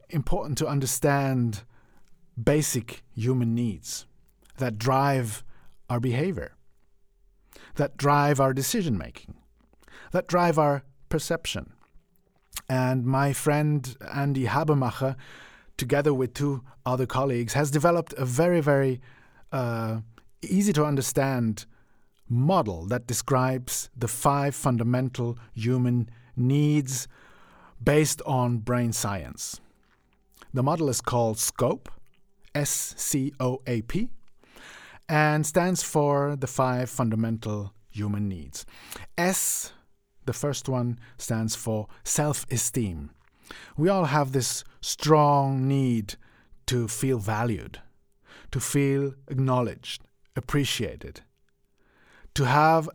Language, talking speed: English, 100 wpm